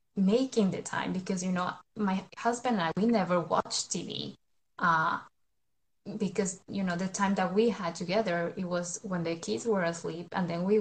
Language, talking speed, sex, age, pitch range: English, 190 wpm, female, 20-39, 175-220 Hz